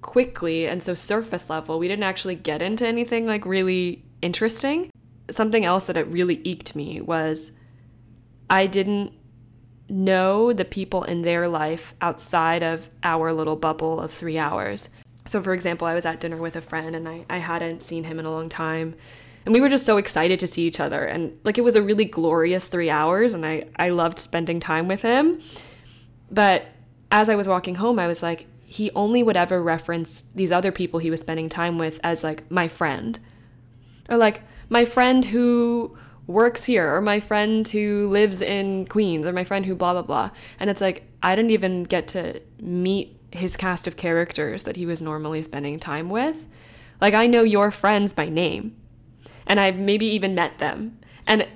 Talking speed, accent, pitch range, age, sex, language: 195 wpm, American, 160-195 Hz, 10-29, female, English